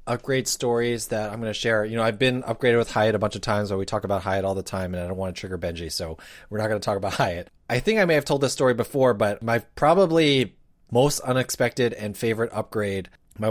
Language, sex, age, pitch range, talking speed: English, male, 30-49, 95-125 Hz, 260 wpm